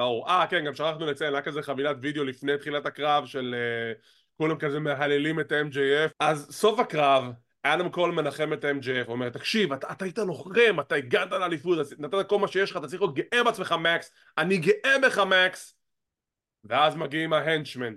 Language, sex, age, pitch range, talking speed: English, male, 20-39, 145-210 Hz, 175 wpm